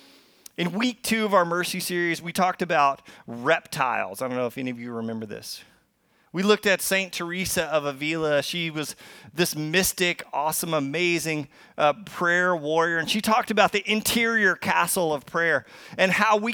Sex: male